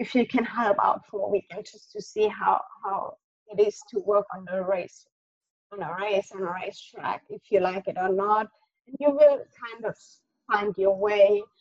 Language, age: English, 20-39